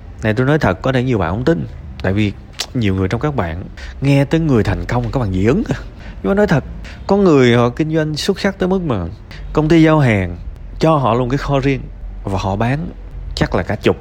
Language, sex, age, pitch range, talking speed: Vietnamese, male, 20-39, 90-135 Hz, 245 wpm